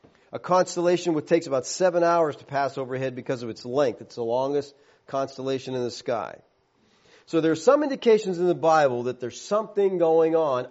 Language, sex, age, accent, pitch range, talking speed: English, male, 40-59, American, 130-165 Hz, 190 wpm